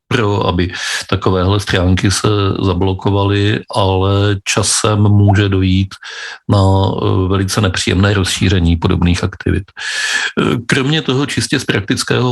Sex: male